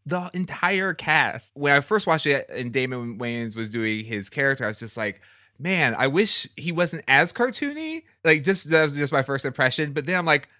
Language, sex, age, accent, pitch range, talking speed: English, male, 20-39, American, 105-145 Hz, 215 wpm